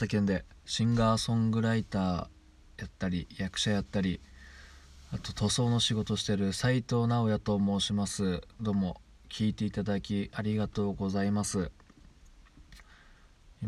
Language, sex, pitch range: Japanese, male, 80-105 Hz